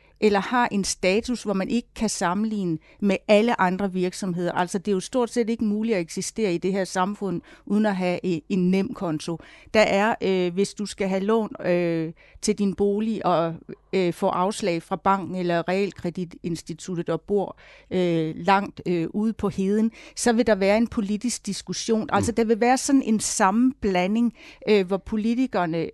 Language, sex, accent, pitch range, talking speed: Danish, female, native, 180-225 Hz, 180 wpm